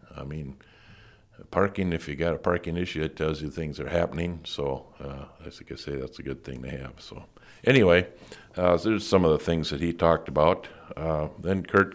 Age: 50-69